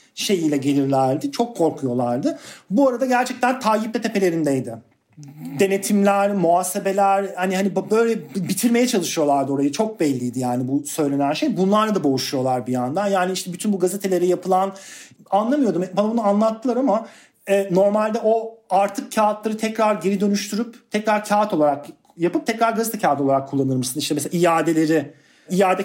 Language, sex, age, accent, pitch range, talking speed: Turkish, male, 40-59, native, 150-240 Hz, 145 wpm